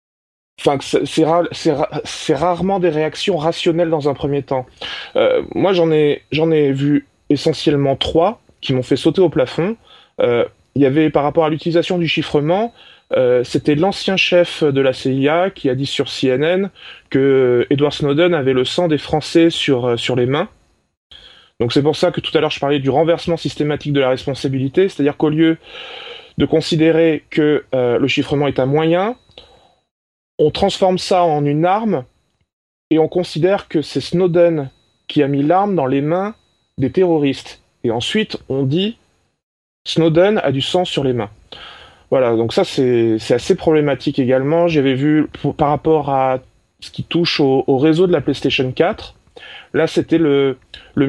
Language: French